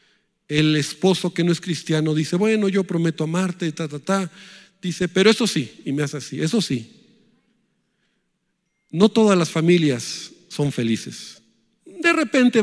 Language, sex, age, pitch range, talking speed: Spanish, male, 50-69, 165-225 Hz, 150 wpm